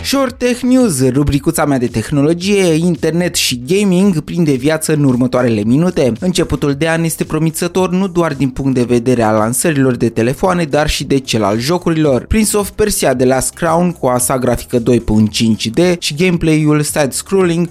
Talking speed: 170 wpm